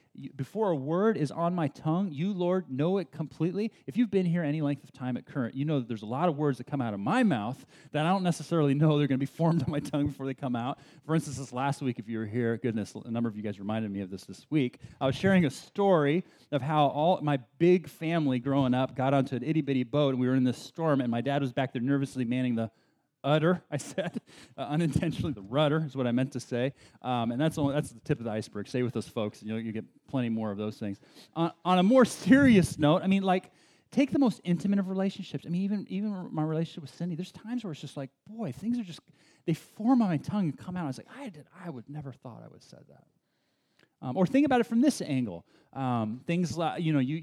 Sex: male